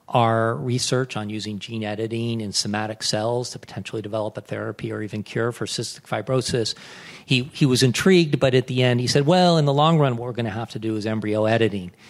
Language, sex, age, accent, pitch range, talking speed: English, male, 40-59, American, 110-130 Hz, 225 wpm